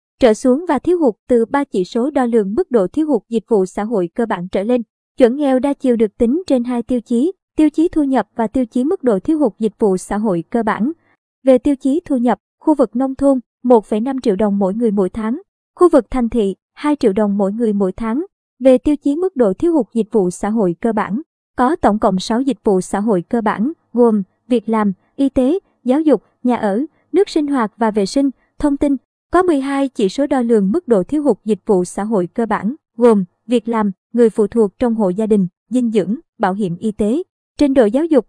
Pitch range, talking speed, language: 215-270 Hz, 240 wpm, Vietnamese